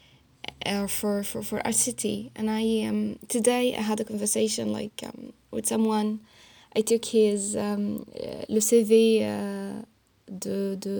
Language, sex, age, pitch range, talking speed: English, female, 10-29, 210-240 Hz, 140 wpm